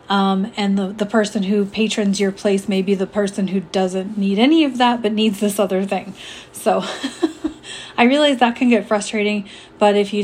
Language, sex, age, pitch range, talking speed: English, female, 30-49, 190-215 Hz, 200 wpm